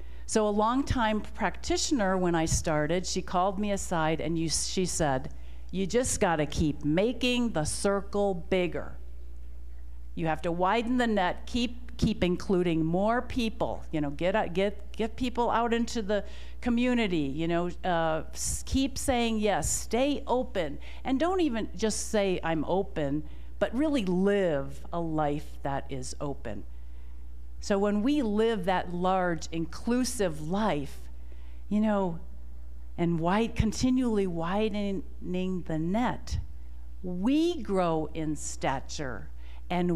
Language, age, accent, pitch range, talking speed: English, 50-69, American, 140-220 Hz, 130 wpm